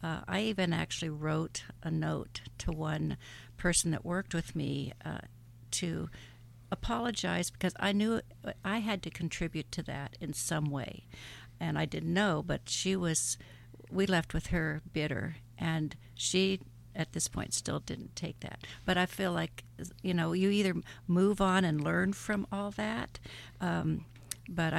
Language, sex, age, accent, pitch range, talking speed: English, female, 60-79, American, 120-180 Hz, 160 wpm